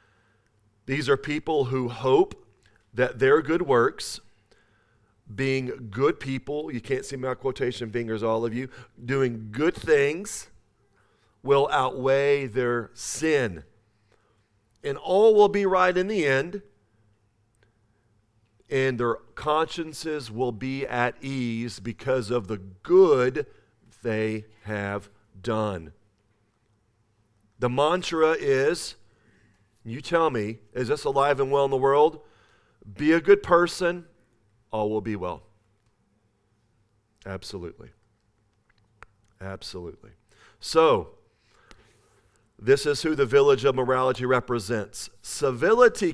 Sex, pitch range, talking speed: male, 105-140 Hz, 110 wpm